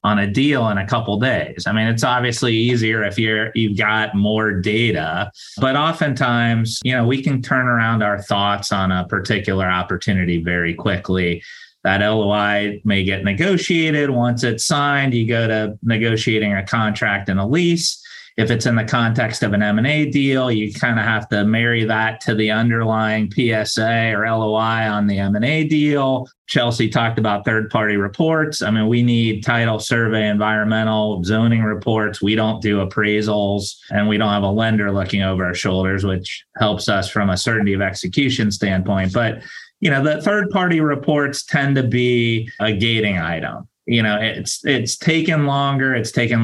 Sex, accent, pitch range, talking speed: male, American, 105-125 Hz, 180 wpm